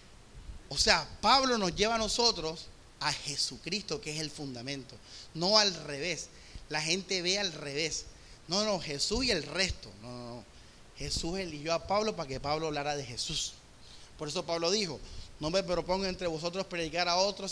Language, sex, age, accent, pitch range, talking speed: Spanish, male, 30-49, Venezuelan, 145-210 Hz, 180 wpm